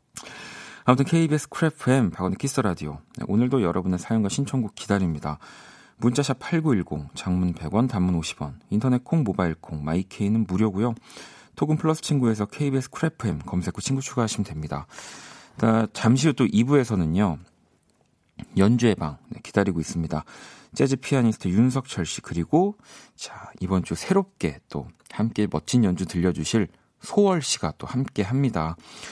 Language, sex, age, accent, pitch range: Korean, male, 40-59, native, 90-135 Hz